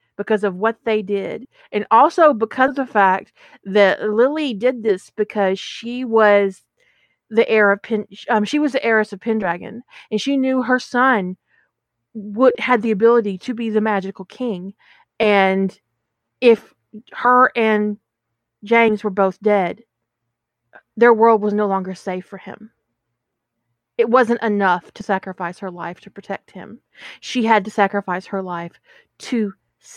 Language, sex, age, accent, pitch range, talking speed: English, female, 40-59, American, 185-230 Hz, 150 wpm